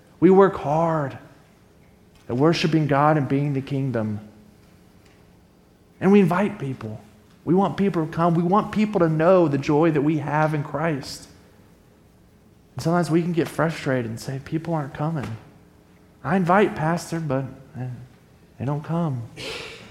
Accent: American